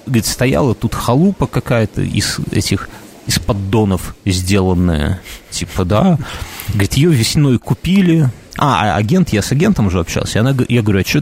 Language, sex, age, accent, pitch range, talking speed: Russian, male, 30-49, native, 95-125 Hz, 155 wpm